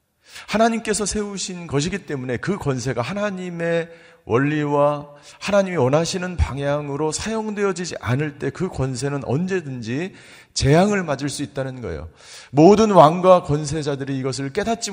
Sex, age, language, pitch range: male, 40-59, Korean, 120-175 Hz